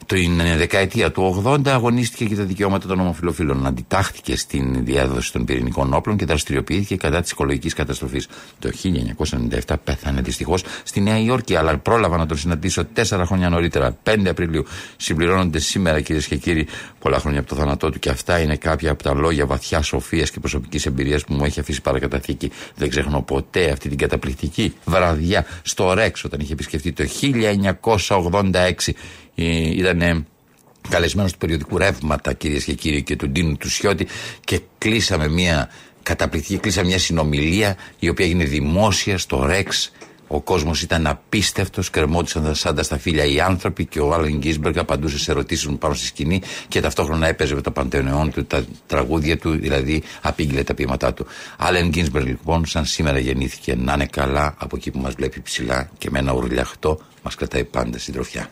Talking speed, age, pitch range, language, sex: 170 wpm, 60-79, 70-90 Hz, Greek, male